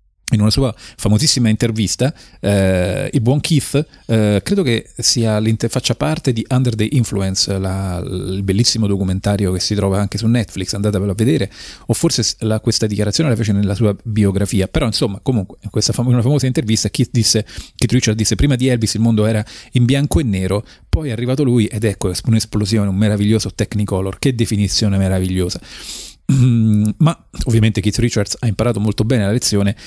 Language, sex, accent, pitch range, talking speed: Italian, male, native, 100-120 Hz, 180 wpm